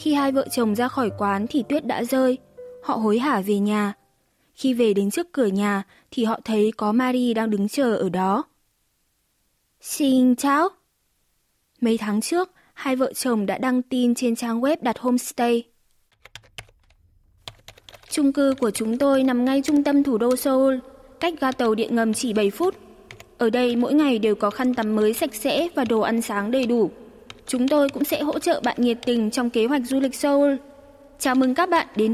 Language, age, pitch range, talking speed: Vietnamese, 20-39, 225-275 Hz, 195 wpm